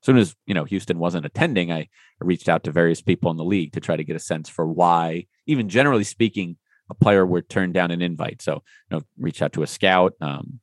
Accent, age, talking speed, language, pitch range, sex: American, 30-49, 250 wpm, English, 85-115 Hz, male